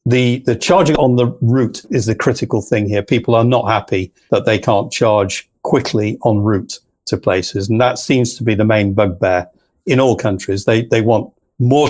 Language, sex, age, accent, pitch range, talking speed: English, male, 50-69, British, 105-125 Hz, 195 wpm